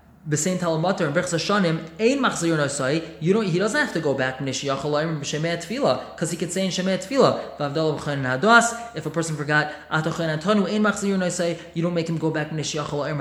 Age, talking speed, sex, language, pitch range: 20-39, 210 wpm, male, English, 155-185 Hz